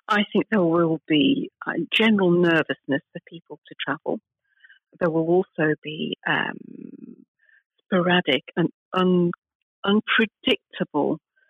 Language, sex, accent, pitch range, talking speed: English, female, British, 170-220 Hz, 100 wpm